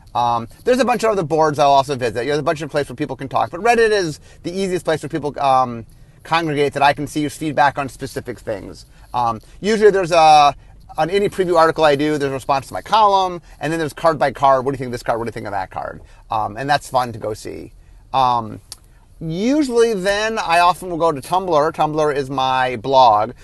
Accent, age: American, 30-49